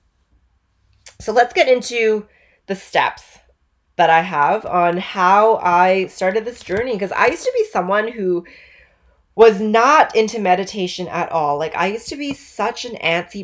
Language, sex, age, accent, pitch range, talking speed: English, female, 20-39, American, 150-190 Hz, 160 wpm